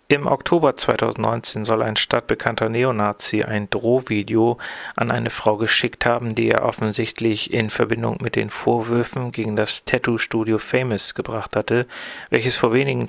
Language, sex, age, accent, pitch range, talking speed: German, male, 40-59, German, 110-125 Hz, 140 wpm